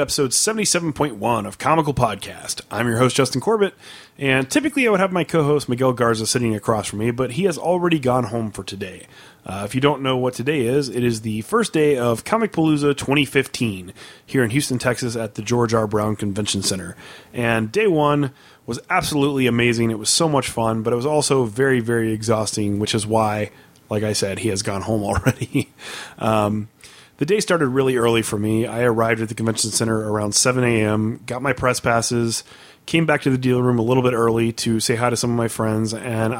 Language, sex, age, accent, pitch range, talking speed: English, male, 30-49, American, 110-135 Hz, 210 wpm